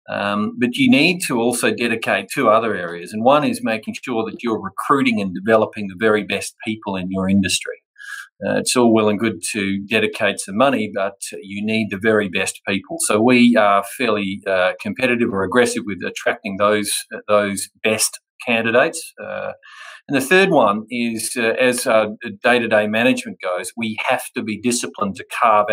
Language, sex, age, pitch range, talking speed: English, male, 40-59, 105-145 Hz, 180 wpm